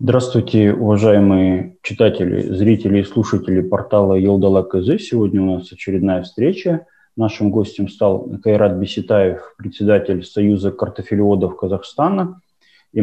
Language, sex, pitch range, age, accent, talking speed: Russian, male, 95-120 Hz, 20-39, native, 110 wpm